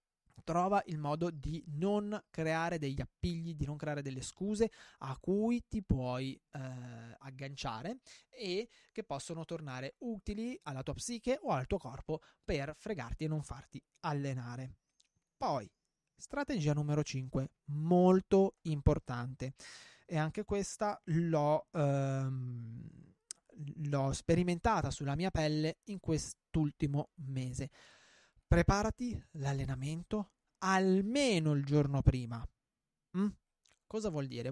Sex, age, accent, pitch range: male, 20-39, native, 135-185 Hz